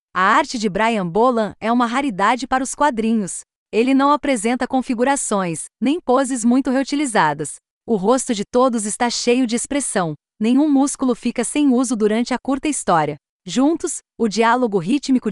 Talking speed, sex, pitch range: 155 wpm, female, 205-260 Hz